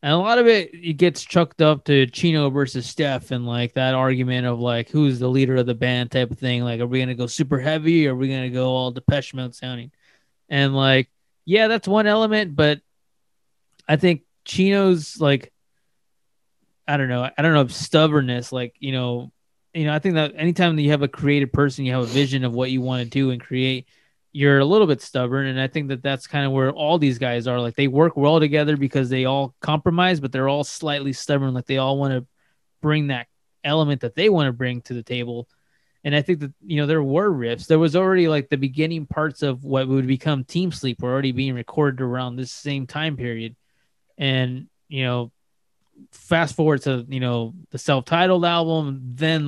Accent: American